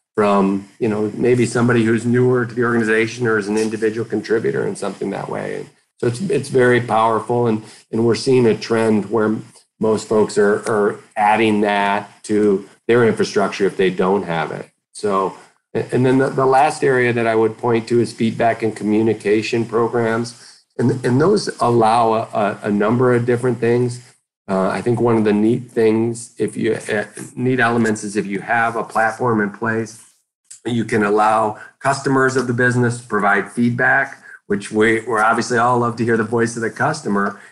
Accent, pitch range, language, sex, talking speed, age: American, 105-120 Hz, English, male, 185 wpm, 40-59